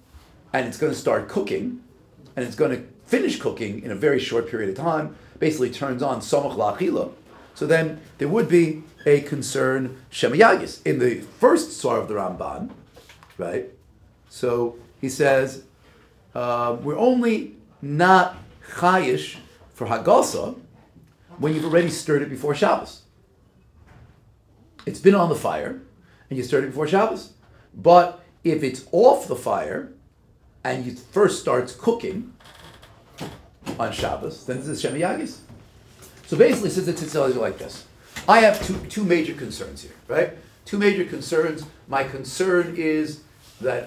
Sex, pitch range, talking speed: male, 125-175 Hz, 150 wpm